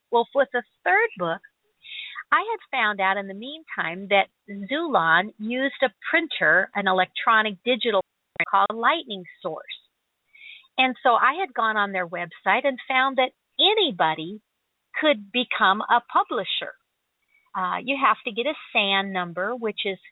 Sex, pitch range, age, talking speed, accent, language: female, 200-265 Hz, 50-69, 150 wpm, American, English